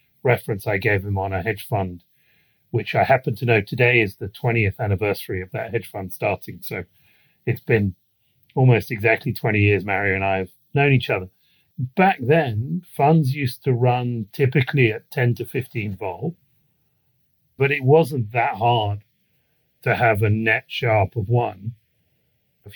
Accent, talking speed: British, 165 wpm